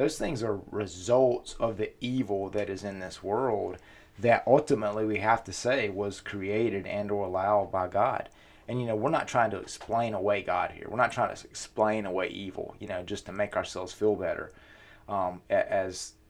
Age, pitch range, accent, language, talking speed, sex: 30-49, 100-115 Hz, American, English, 190 wpm, male